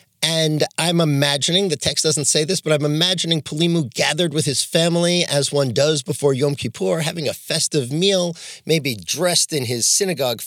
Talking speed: 180 wpm